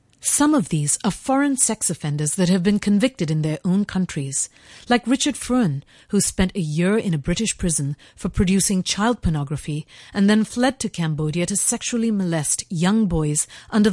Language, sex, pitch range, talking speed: English, female, 155-210 Hz, 175 wpm